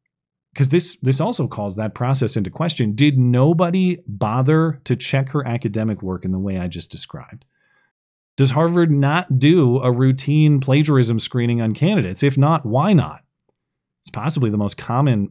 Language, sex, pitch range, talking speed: English, male, 115-155 Hz, 165 wpm